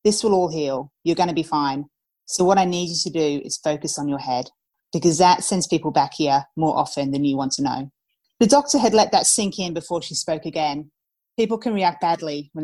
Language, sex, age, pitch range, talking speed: English, female, 30-49, 145-180 Hz, 235 wpm